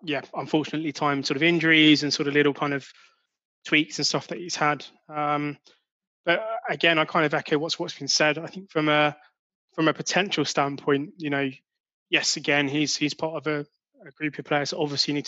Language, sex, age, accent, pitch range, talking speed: English, male, 20-39, British, 145-160 Hz, 210 wpm